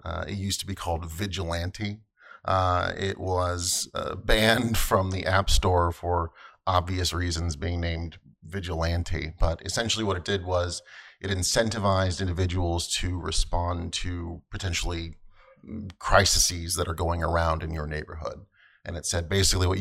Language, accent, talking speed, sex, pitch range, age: English, American, 145 wpm, male, 85-100 Hz, 30-49